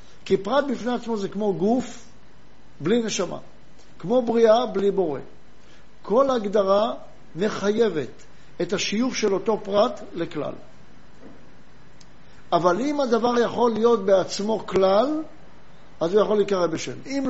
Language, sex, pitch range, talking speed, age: Hebrew, male, 185-230 Hz, 120 wpm, 60-79